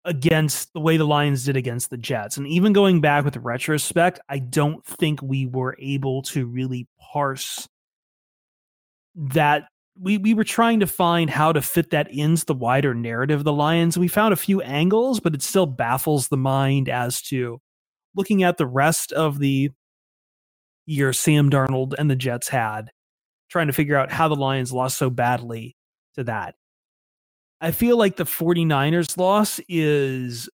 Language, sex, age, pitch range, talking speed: English, male, 30-49, 130-175 Hz, 170 wpm